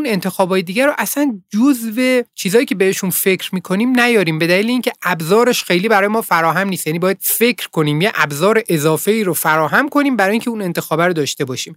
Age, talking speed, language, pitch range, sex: 30-49, 190 wpm, Persian, 150-210 Hz, male